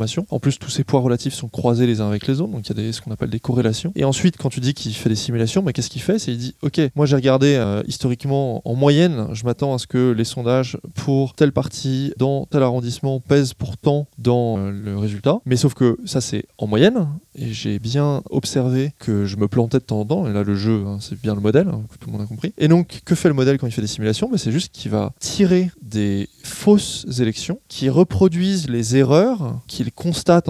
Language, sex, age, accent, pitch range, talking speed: French, male, 20-39, French, 115-150 Hz, 255 wpm